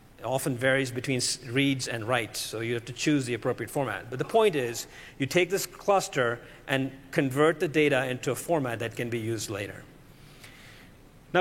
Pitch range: 130-155 Hz